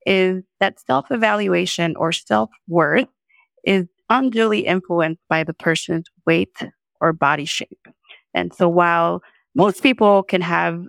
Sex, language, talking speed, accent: female, English, 120 wpm, American